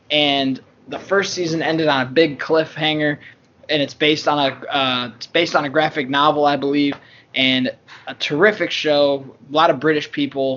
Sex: male